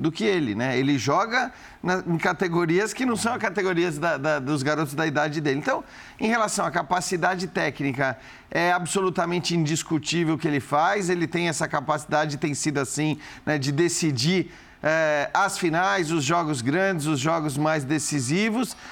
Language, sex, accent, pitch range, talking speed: Portuguese, male, Brazilian, 155-190 Hz, 170 wpm